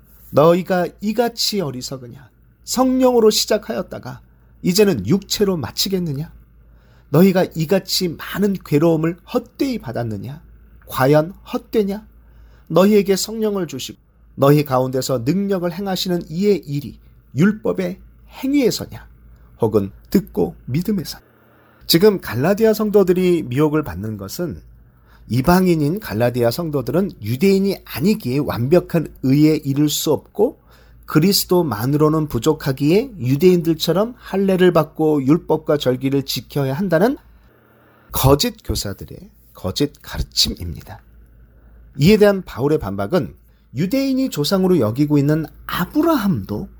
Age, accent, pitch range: 40-59, native, 125-195 Hz